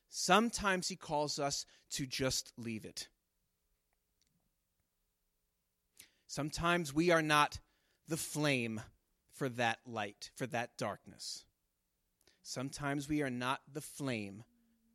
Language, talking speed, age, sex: English, 105 wpm, 30-49, male